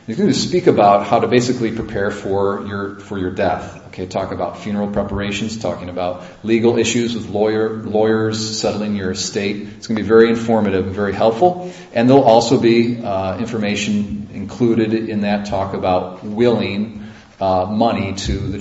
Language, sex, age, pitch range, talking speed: English, male, 40-59, 95-115 Hz, 170 wpm